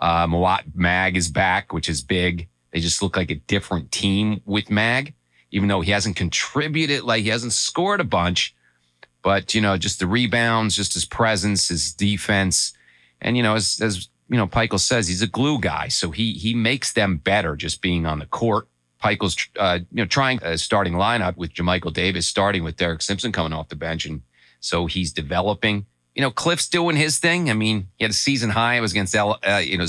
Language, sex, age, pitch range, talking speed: English, male, 30-49, 80-110 Hz, 215 wpm